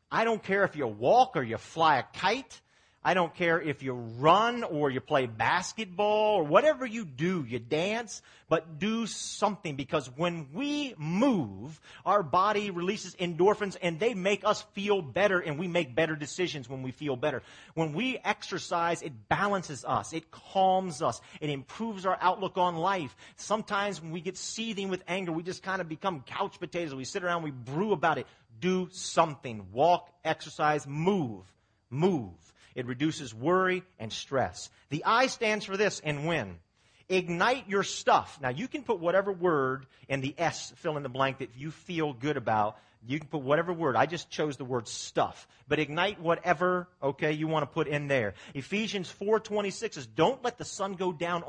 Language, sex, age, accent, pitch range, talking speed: English, male, 40-59, American, 145-195 Hz, 185 wpm